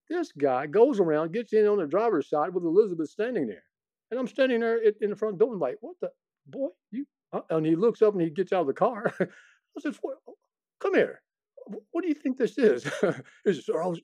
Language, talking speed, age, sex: English, 220 wpm, 50-69, male